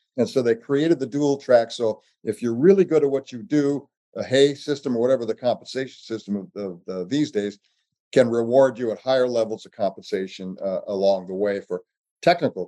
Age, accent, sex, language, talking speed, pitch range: 50-69, American, male, English, 210 wpm, 110-155 Hz